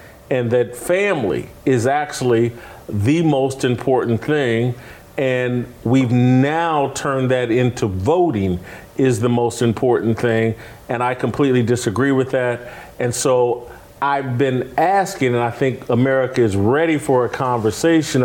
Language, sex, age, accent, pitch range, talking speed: English, male, 40-59, American, 115-135 Hz, 135 wpm